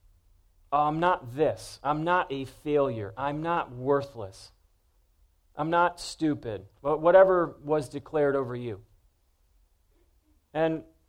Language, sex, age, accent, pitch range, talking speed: English, male, 40-59, American, 120-170 Hz, 105 wpm